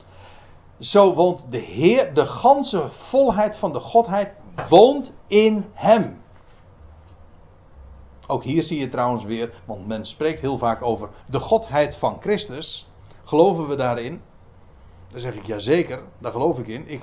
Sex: male